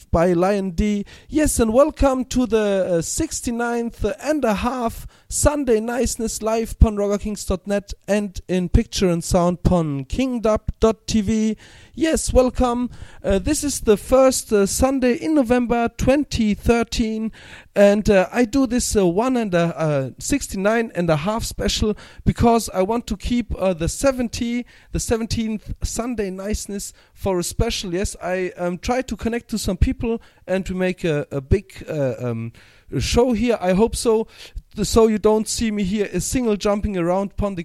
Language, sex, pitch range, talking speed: English, male, 185-235 Hz, 165 wpm